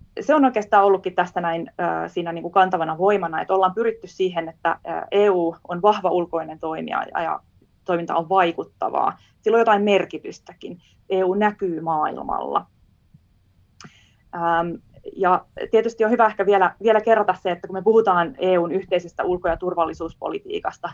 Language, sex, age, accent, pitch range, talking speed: Finnish, female, 20-39, native, 165-205 Hz, 140 wpm